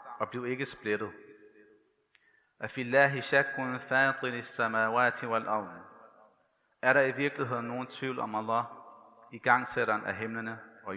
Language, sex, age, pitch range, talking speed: Danish, male, 30-49, 120-150 Hz, 80 wpm